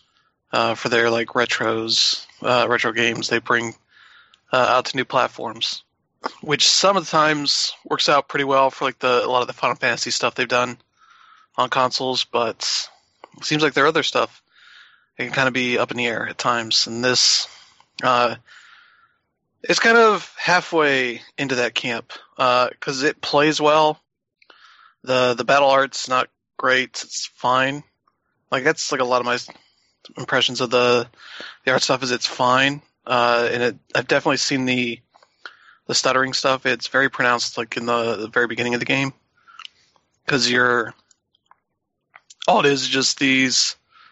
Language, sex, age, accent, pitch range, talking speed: English, male, 20-39, American, 120-140 Hz, 170 wpm